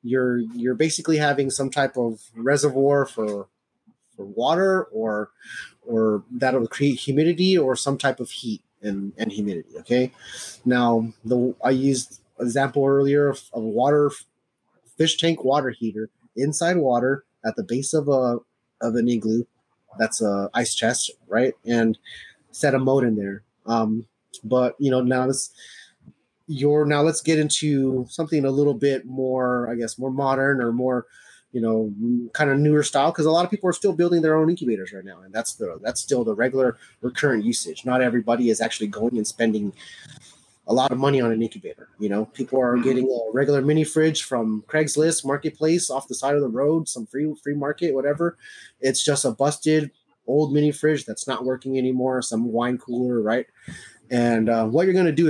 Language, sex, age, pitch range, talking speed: English, male, 30-49, 115-145 Hz, 180 wpm